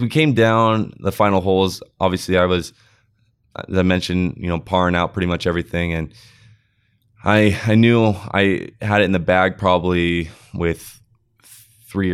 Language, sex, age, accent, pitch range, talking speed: English, male, 20-39, American, 85-105 Hz, 160 wpm